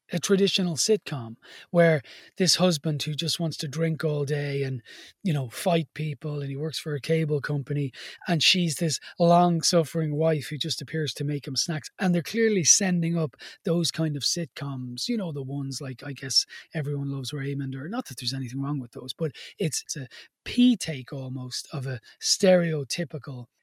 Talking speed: 185 wpm